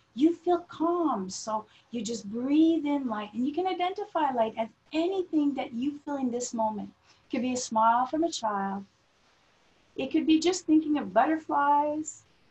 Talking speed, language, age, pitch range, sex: 180 wpm, English, 40-59, 235-325 Hz, female